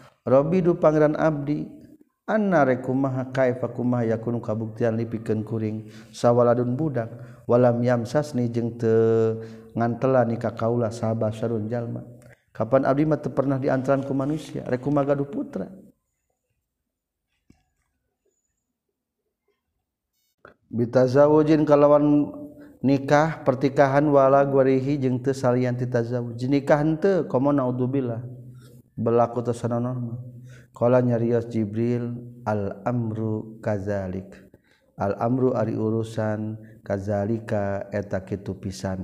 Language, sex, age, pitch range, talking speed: Indonesian, male, 50-69, 110-135 Hz, 90 wpm